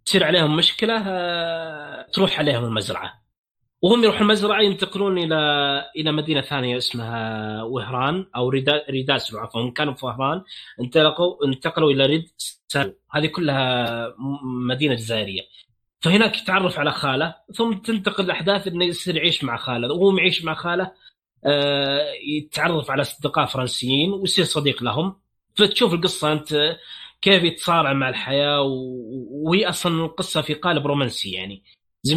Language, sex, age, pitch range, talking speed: Arabic, male, 20-39, 125-165 Hz, 125 wpm